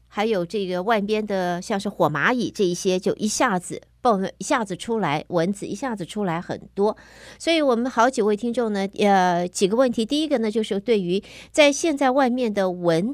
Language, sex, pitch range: Chinese, female, 190-255 Hz